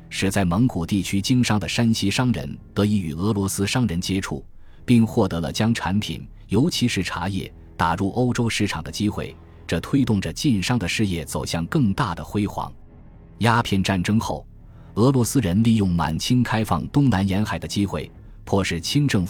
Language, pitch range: Chinese, 85-110 Hz